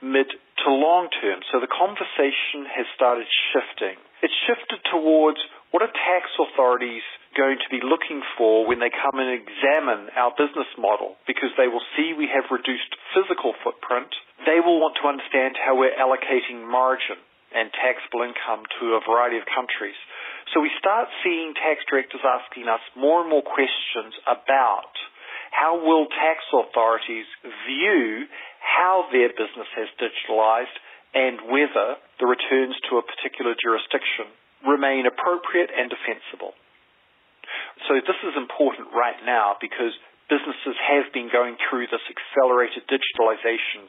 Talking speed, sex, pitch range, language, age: 145 wpm, male, 120-160 Hz, English, 40-59